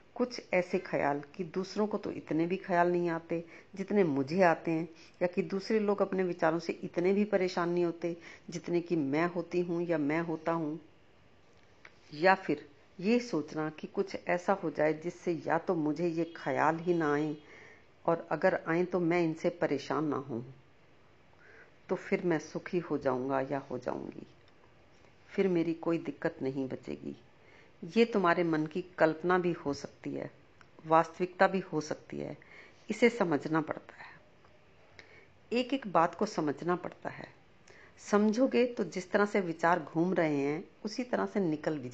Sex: female